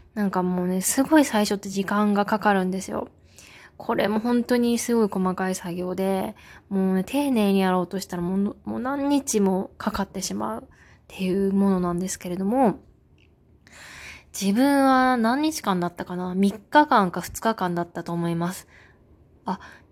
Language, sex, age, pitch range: Japanese, female, 20-39, 185-225 Hz